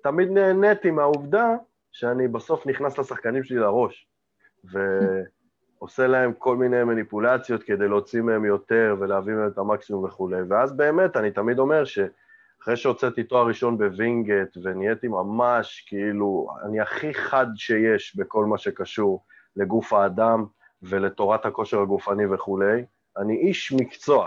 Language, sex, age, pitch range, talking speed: Hebrew, male, 20-39, 105-145 Hz, 130 wpm